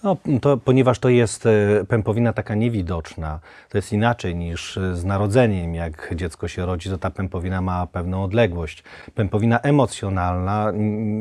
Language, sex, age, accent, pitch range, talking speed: Polish, male, 40-59, native, 90-110 Hz, 140 wpm